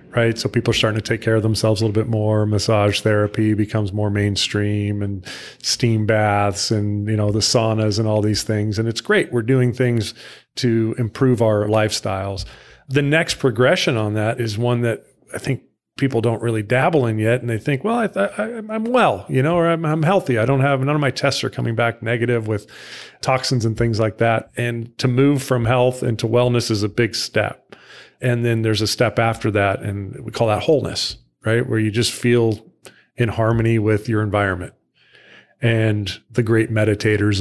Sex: male